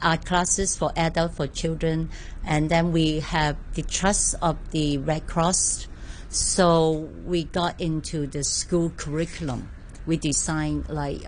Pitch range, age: 140-165 Hz, 60-79